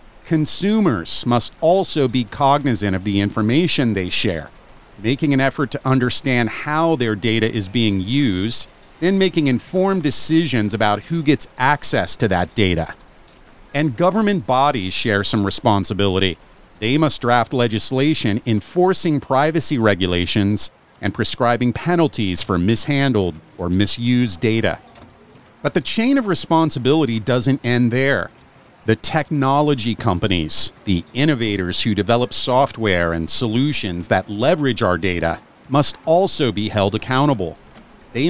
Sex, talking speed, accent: male, 125 wpm, American